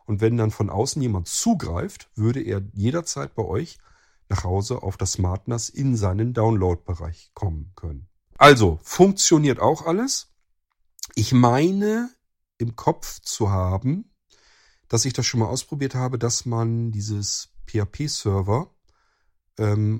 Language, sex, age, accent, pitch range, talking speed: German, male, 40-59, German, 95-120 Hz, 130 wpm